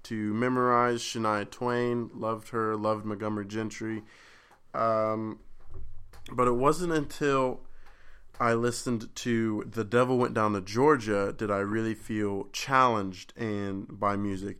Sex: male